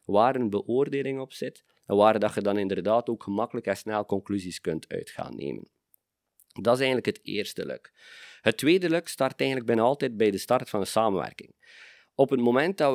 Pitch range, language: 105-130 Hz, Dutch